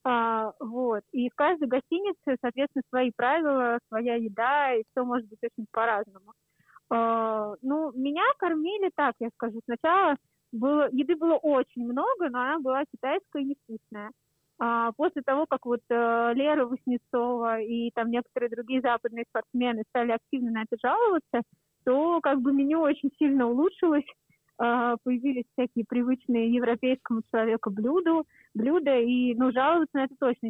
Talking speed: 150 wpm